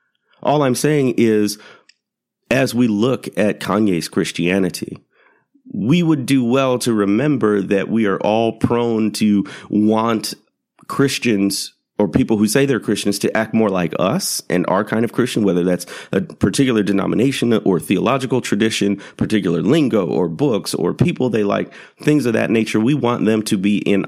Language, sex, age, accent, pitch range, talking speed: English, male, 30-49, American, 100-140 Hz, 165 wpm